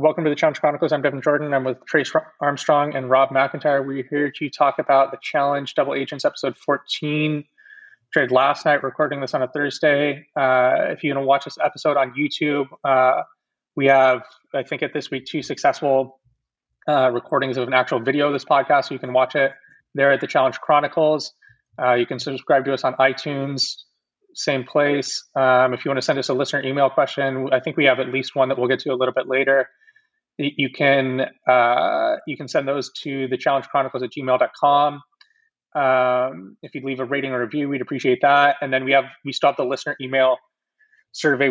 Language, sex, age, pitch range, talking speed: English, male, 20-39, 130-145 Hz, 205 wpm